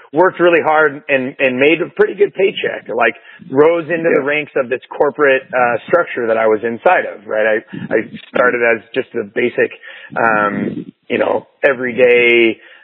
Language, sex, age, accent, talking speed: English, male, 30-49, American, 175 wpm